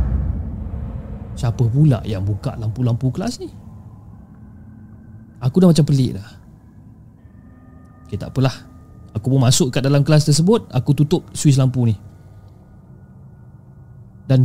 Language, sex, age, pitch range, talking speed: Malay, male, 20-39, 105-150 Hz, 110 wpm